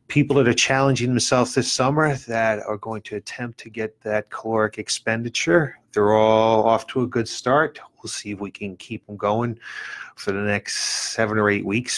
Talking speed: 195 wpm